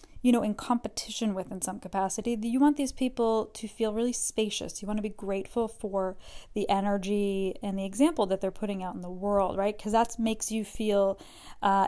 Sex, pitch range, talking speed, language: female, 200-235 Hz, 205 wpm, English